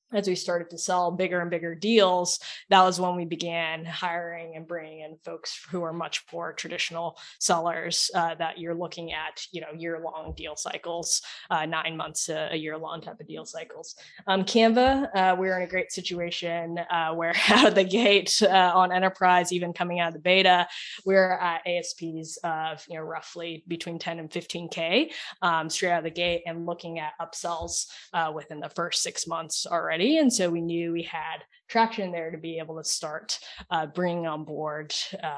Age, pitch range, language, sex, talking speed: 10-29, 170-190 Hz, English, female, 190 wpm